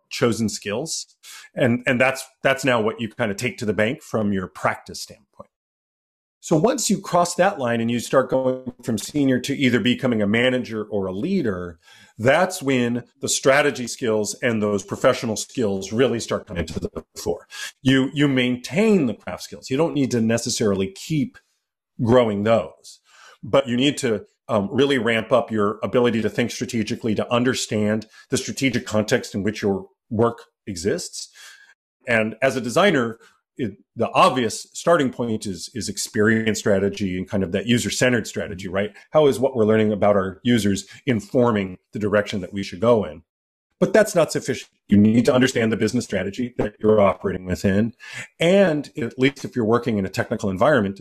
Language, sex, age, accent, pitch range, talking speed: Russian, male, 40-59, American, 105-130 Hz, 180 wpm